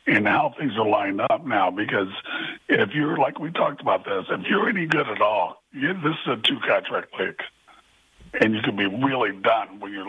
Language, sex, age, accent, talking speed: English, male, 60-79, American, 215 wpm